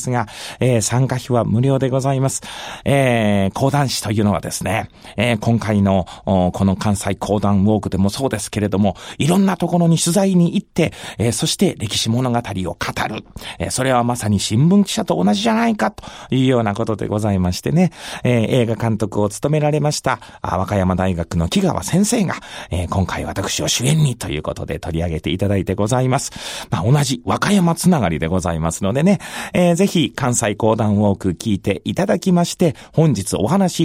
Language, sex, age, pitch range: Japanese, male, 40-59, 100-165 Hz